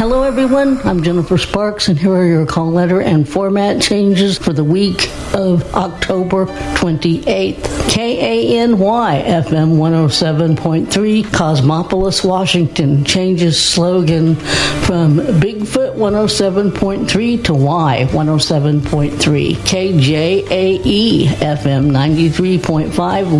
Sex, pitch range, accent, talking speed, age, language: female, 155-195 Hz, American, 90 wpm, 60-79, English